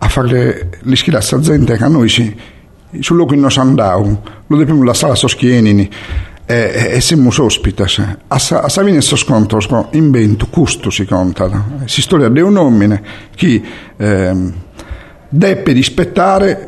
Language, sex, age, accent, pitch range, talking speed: Italian, male, 50-69, native, 105-145 Hz, 150 wpm